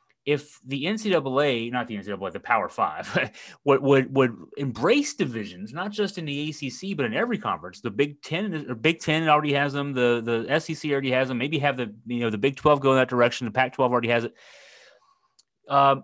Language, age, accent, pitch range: English, 30-49, American, 135-180 Hz